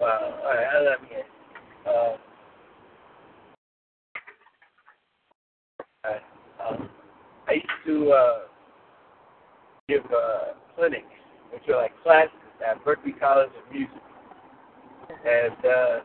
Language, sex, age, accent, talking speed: English, male, 50-69, American, 95 wpm